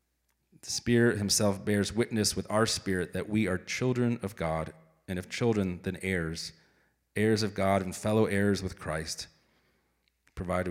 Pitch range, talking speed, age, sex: 95-120 Hz, 155 wpm, 30-49, male